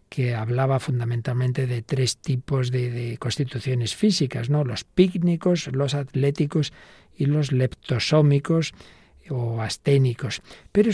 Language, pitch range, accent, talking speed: Spanish, 125-155 Hz, Spanish, 115 wpm